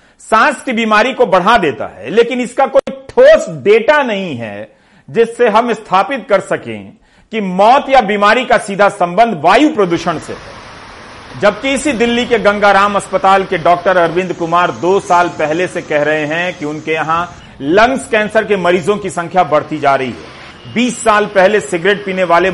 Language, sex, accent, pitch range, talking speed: Hindi, male, native, 170-215 Hz, 175 wpm